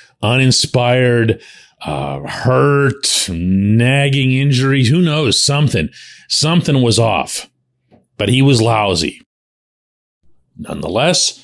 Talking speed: 85 wpm